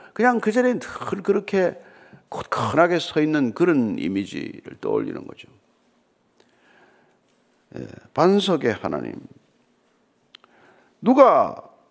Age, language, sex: 50-69, Korean, male